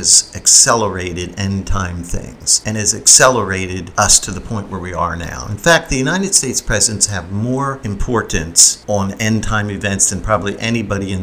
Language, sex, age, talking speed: English, male, 50-69, 165 wpm